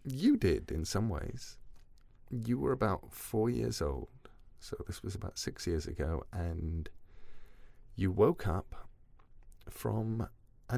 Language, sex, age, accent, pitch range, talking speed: English, male, 30-49, British, 85-120 Hz, 135 wpm